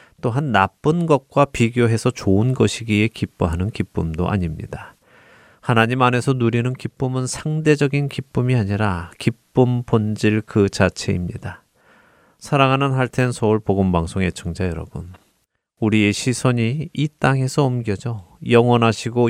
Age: 30-49